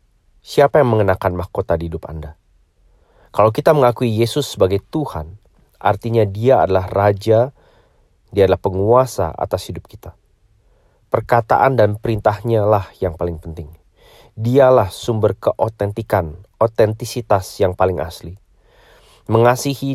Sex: male